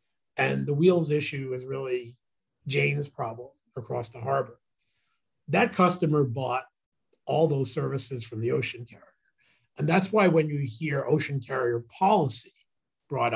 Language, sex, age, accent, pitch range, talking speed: English, male, 40-59, American, 120-155 Hz, 140 wpm